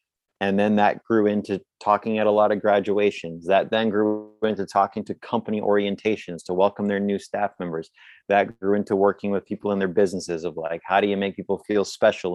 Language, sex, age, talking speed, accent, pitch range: English, male, 30-49, 210 wpm, American, 95-105 Hz